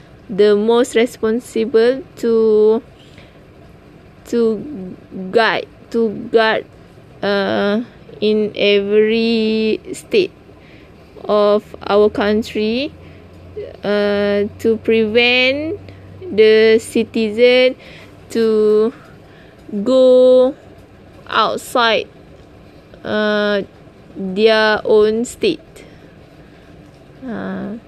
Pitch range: 210-245 Hz